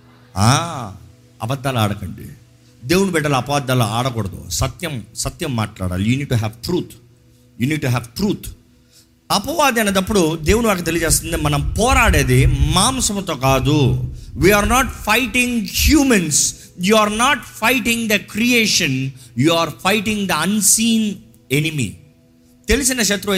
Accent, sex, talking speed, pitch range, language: native, male, 115 wpm, 130-210 Hz, Telugu